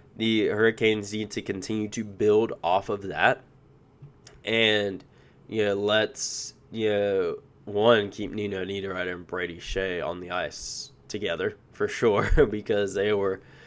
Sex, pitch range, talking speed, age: male, 105-130 Hz, 140 wpm, 10-29